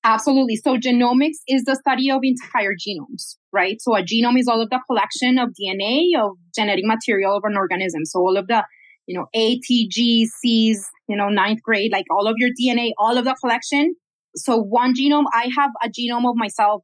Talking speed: 205 wpm